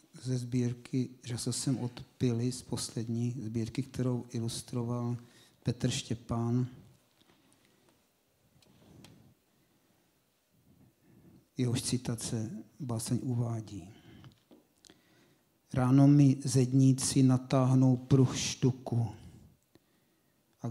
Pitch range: 115-135 Hz